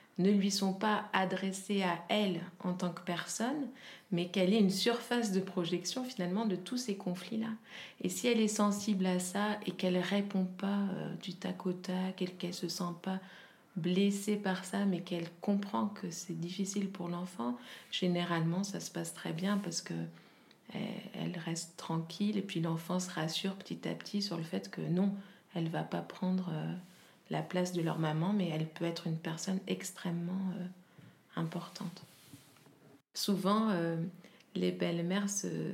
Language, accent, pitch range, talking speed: French, French, 170-200 Hz, 175 wpm